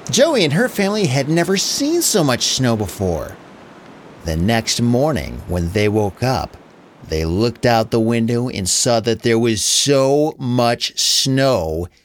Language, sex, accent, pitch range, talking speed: English, male, American, 115-180 Hz, 155 wpm